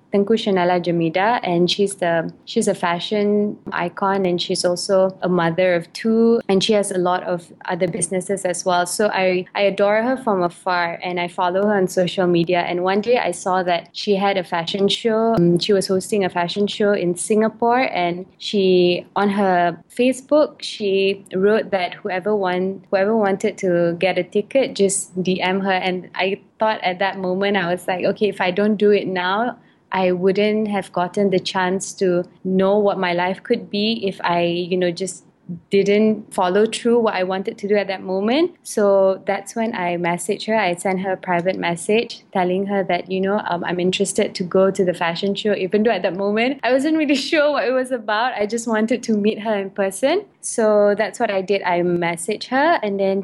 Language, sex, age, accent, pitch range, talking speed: English, female, 20-39, Malaysian, 180-215 Hz, 205 wpm